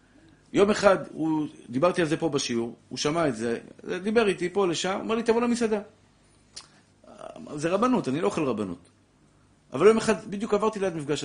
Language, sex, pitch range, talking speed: Hebrew, male, 135-195 Hz, 180 wpm